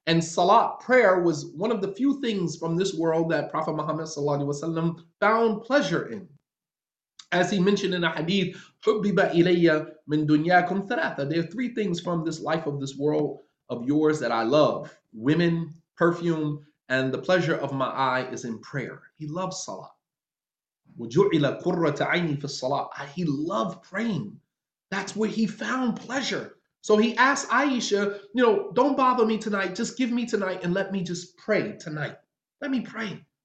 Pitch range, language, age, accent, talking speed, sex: 160-220 Hz, English, 30-49, American, 160 wpm, male